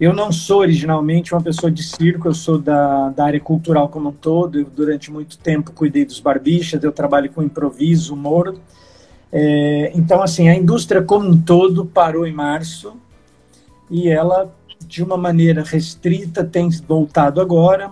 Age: 50-69